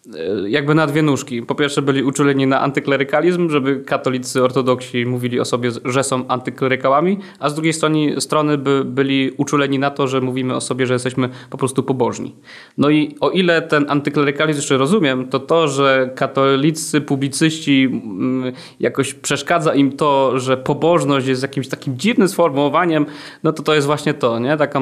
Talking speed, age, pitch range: 170 wpm, 20-39, 125-145 Hz